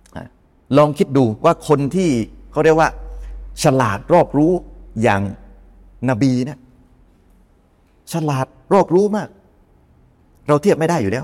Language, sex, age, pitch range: Thai, male, 30-49, 95-150 Hz